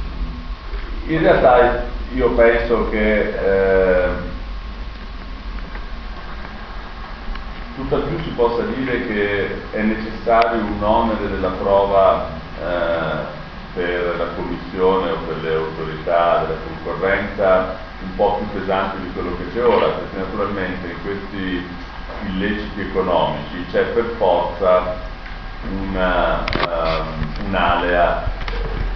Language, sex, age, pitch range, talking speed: Italian, male, 40-59, 85-100 Hz, 100 wpm